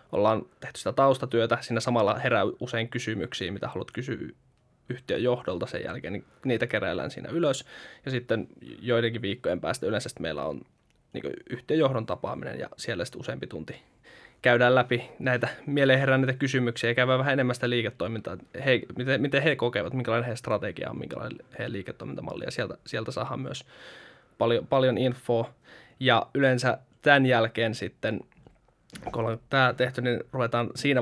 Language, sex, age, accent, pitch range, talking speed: Finnish, male, 20-39, native, 115-130 Hz, 155 wpm